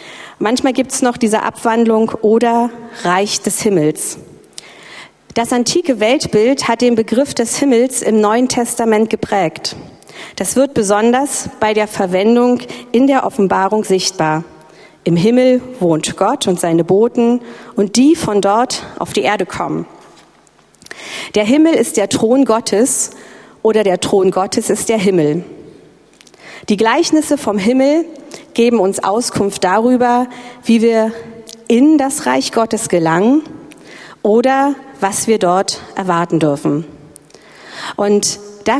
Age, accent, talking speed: 40-59, German, 130 wpm